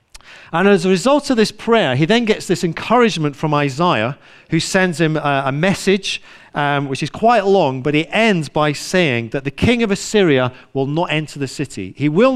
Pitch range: 130-180 Hz